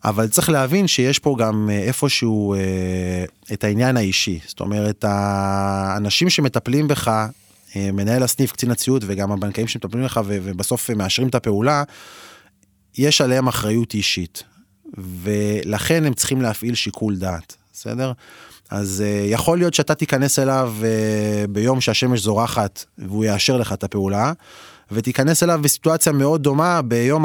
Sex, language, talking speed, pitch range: male, Hebrew, 130 wpm, 105-145 Hz